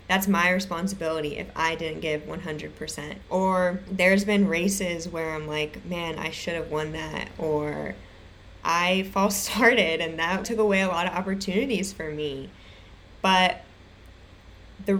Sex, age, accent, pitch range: female, 20-39, American, 165-200 Hz